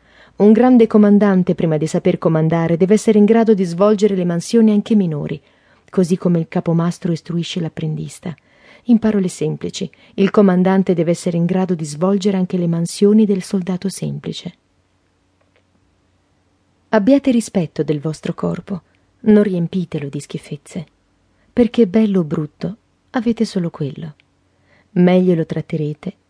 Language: Italian